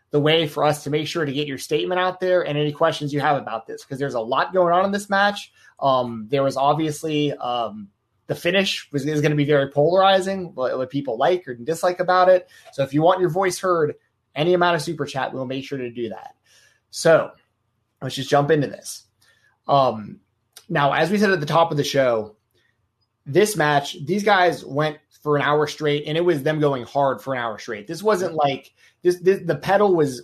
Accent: American